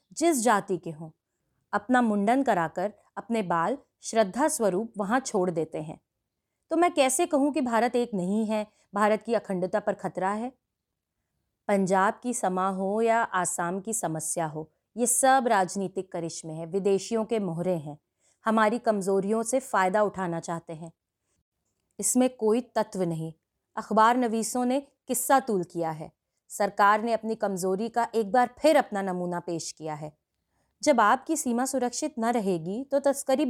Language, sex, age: Hindi, female, 30-49